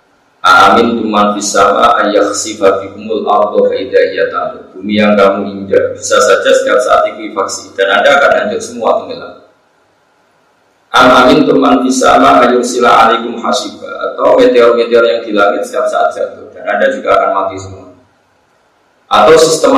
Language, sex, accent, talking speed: Indonesian, male, native, 75 wpm